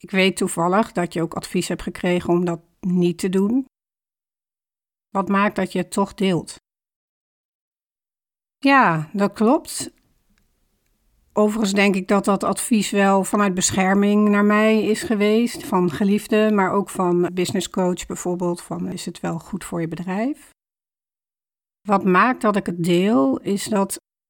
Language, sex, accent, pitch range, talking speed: Dutch, female, Dutch, 185-215 Hz, 145 wpm